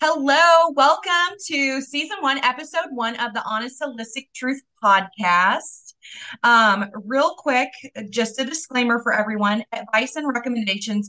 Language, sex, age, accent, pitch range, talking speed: English, female, 20-39, American, 185-235 Hz, 130 wpm